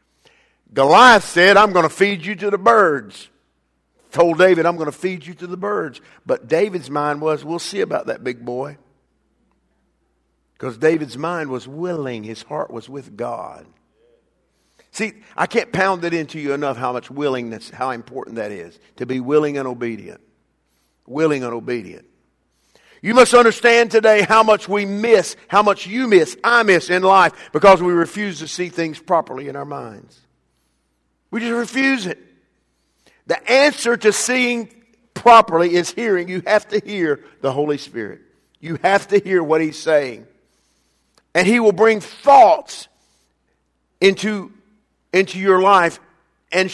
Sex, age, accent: male, 50-69, American